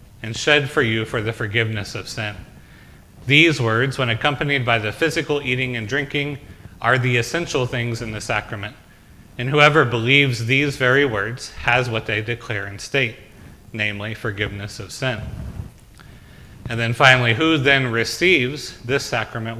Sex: male